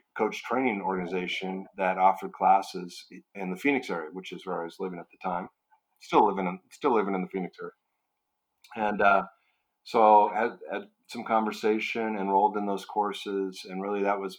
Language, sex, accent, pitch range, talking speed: English, male, American, 90-100 Hz, 185 wpm